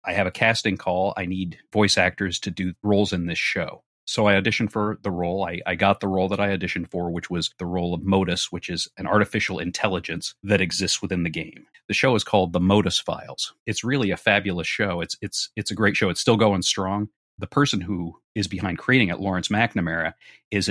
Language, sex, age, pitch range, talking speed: English, male, 40-59, 90-110 Hz, 225 wpm